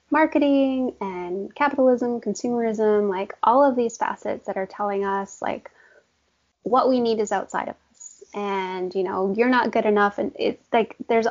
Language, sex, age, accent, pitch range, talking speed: English, female, 20-39, American, 195-235 Hz, 170 wpm